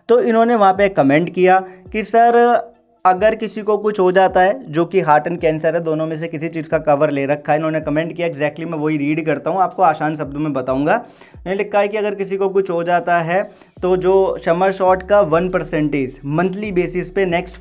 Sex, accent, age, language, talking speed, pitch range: male, native, 20-39, Hindi, 230 wpm, 155-205 Hz